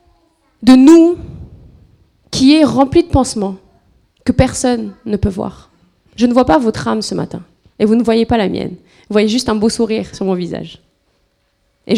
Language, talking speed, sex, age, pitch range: French, 185 wpm, female, 20-39, 200-285 Hz